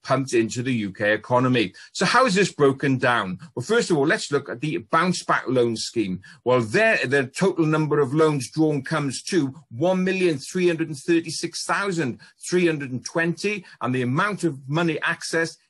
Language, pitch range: English, 125-170 Hz